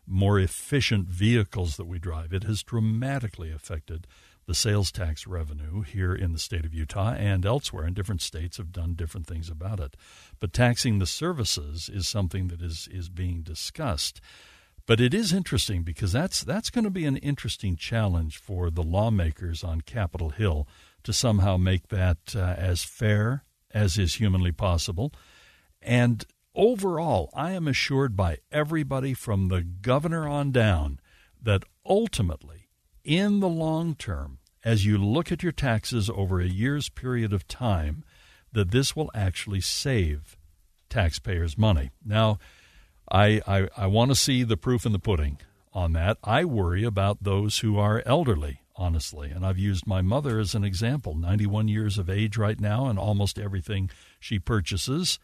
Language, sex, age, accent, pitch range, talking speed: English, male, 60-79, American, 85-115 Hz, 165 wpm